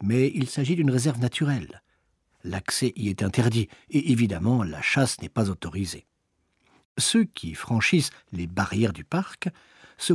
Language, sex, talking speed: French, male, 150 wpm